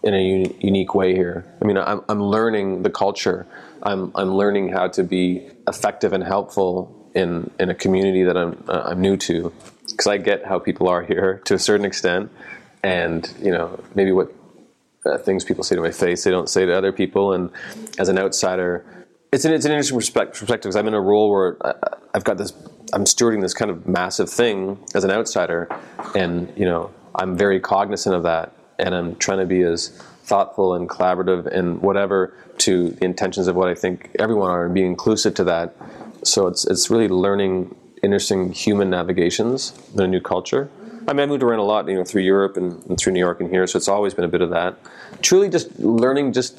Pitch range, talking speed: 90-100 Hz, 215 wpm